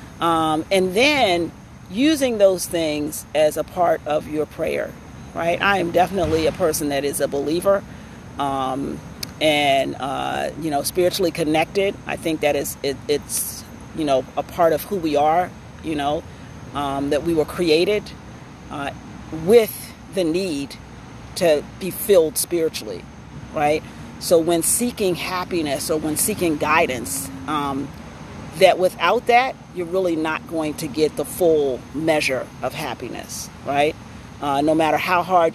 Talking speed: 150 wpm